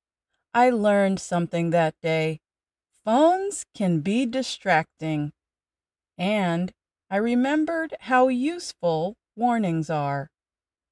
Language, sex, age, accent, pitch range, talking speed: English, female, 40-59, American, 170-245 Hz, 90 wpm